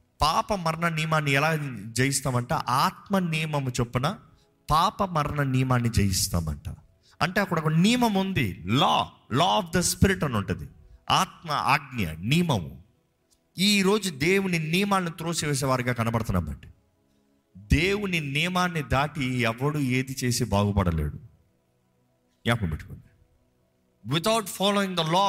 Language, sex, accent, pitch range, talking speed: Telugu, male, native, 125-190 Hz, 100 wpm